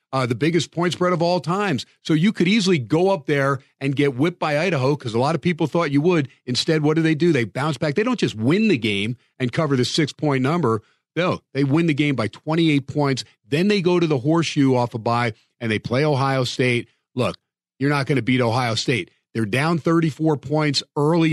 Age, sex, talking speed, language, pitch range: 40-59, male, 235 wpm, English, 130-165 Hz